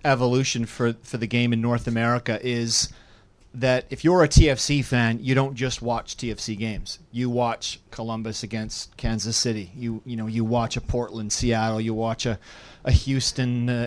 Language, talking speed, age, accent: English, 175 wpm, 30-49, American